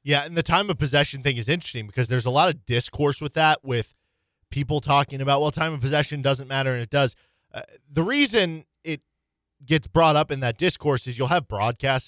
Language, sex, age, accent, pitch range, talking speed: English, male, 20-39, American, 115-155 Hz, 220 wpm